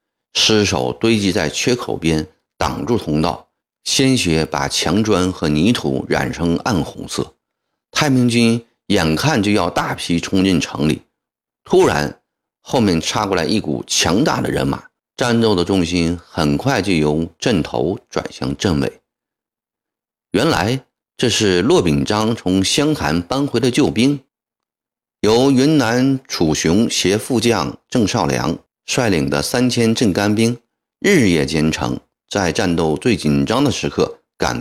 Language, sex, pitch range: Chinese, male, 80-120 Hz